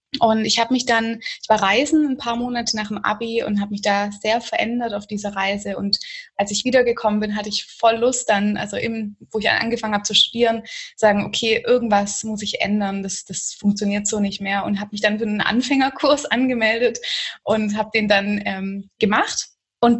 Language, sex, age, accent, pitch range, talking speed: German, female, 20-39, German, 205-240 Hz, 205 wpm